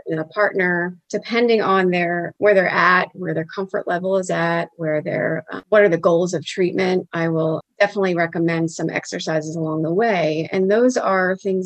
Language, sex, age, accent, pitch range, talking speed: English, female, 30-49, American, 170-205 Hz, 190 wpm